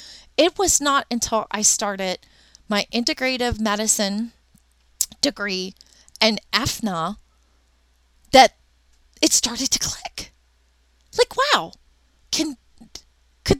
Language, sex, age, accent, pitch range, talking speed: English, female, 30-49, American, 195-275 Hz, 95 wpm